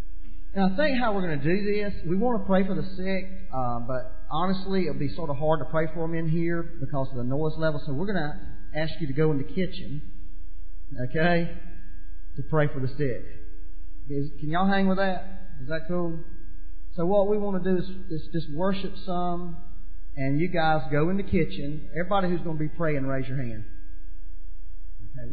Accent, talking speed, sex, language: American, 210 wpm, male, English